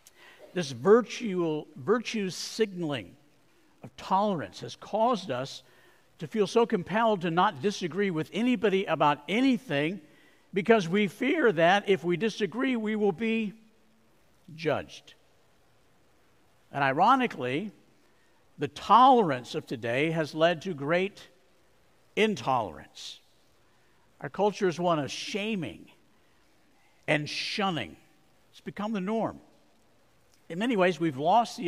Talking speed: 115 wpm